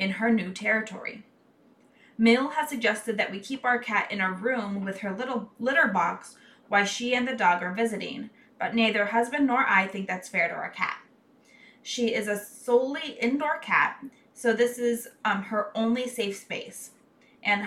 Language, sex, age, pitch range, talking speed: English, female, 20-39, 205-255 Hz, 180 wpm